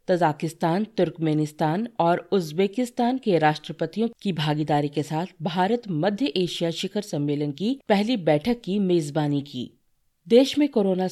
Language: Hindi